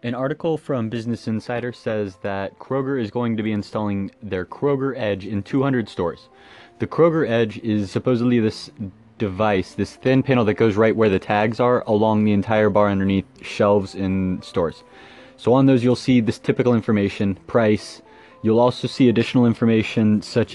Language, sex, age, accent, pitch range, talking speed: English, male, 20-39, American, 105-120 Hz, 170 wpm